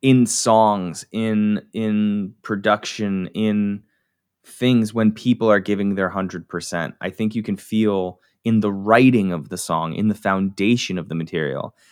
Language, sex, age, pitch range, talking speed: English, male, 20-39, 95-115 Hz, 150 wpm